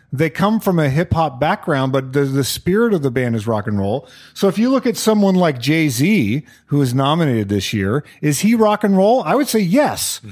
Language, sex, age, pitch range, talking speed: English, male, 40-59, 135-180 Hz, 225 wpm